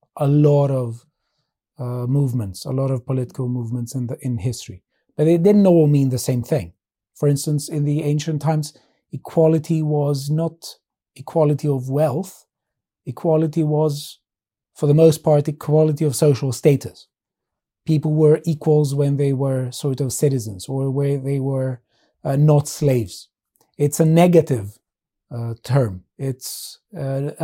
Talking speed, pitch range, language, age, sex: 145 wpm, 130-160 Hz, English, 30-49, male